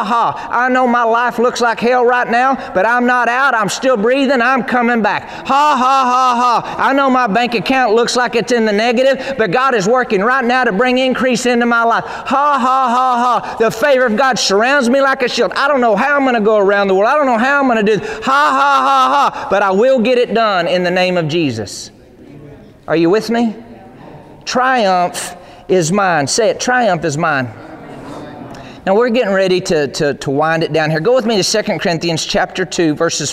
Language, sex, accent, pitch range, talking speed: English, male, American, 160-245 Hz, 225 wpm